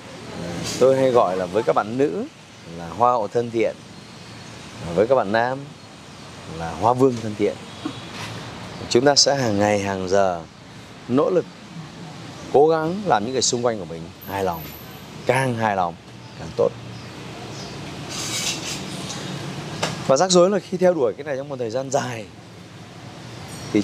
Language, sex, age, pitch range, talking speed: Vietnamese, male, 20-39, 115-150 Hz, 155 wpm